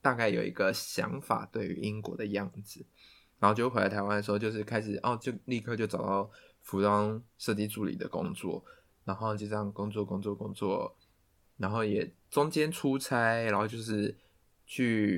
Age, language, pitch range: 20-39, Chinese, 100-120 Hz